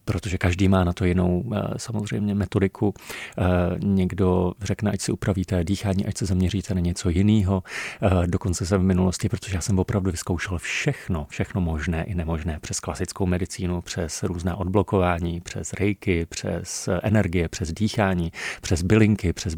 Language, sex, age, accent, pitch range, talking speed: Czech, male, 40-59, native, 90-105 Hz, 150 wpm